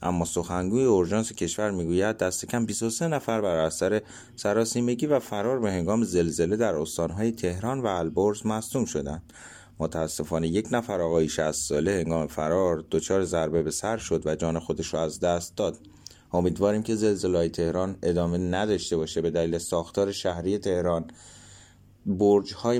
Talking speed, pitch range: 150 wpm, 90-115 Hz